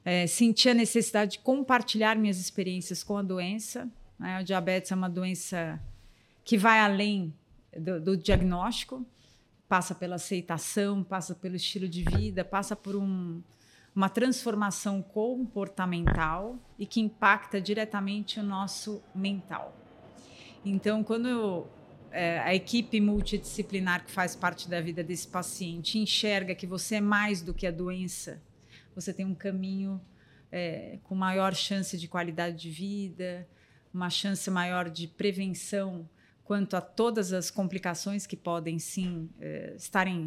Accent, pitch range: Brazilian, 175-205 Hz